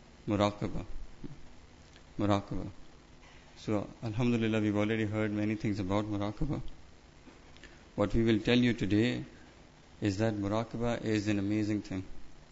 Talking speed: 115 wpm